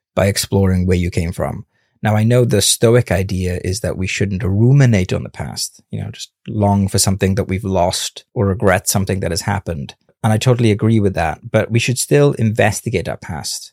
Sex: male